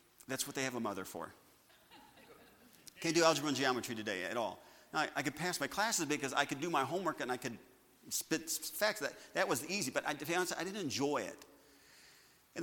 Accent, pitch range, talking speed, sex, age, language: American, 120-170 Hz, 225 wpm, male, 40-59, English